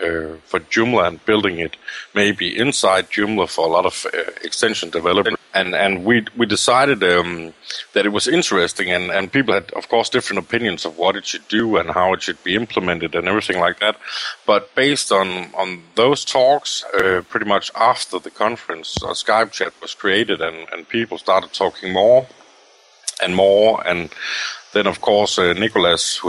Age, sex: 50-69, male